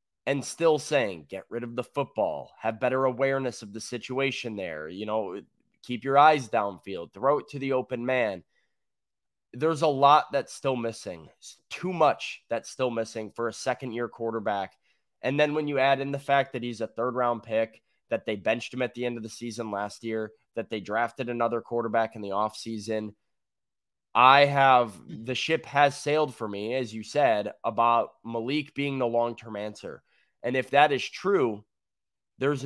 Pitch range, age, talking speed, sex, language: 110-145 Hz, 20-39, 180 wpm, male, English